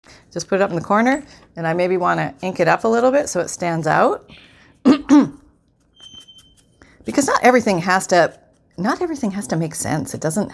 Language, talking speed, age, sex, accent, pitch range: English, 200 wpm, 40-59, female, American, 150-215 Hz